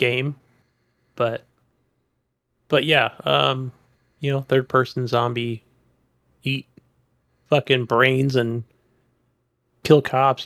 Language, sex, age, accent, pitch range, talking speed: English, male, 30-49, American, 120-145 Hz, 90 wpm